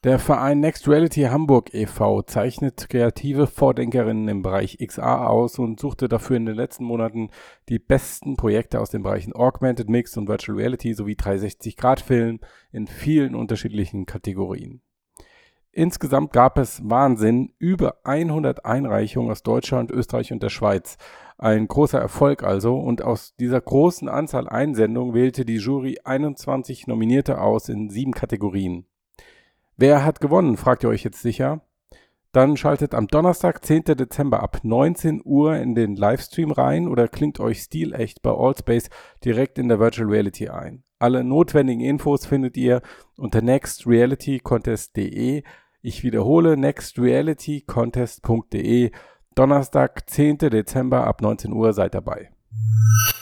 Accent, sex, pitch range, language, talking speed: German, male, 110-140 Hz, German, 135 wpm